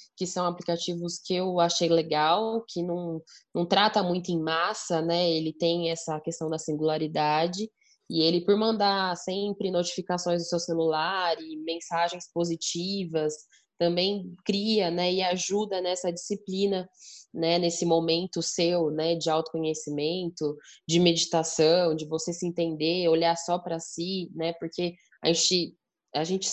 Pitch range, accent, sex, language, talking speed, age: 160-180 Hz, Brazilian, female, Portuguese, 140 wpm, 10-29